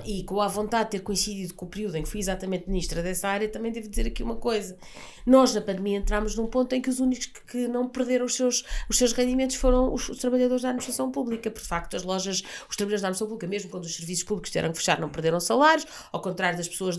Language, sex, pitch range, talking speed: Portuguese, female, 200-260 Hz, 260 wpm